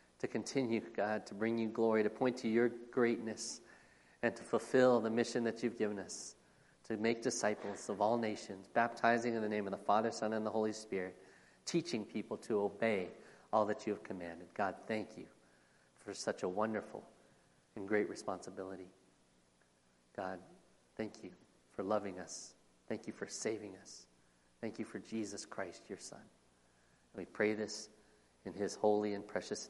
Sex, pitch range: male, 100-160 Hz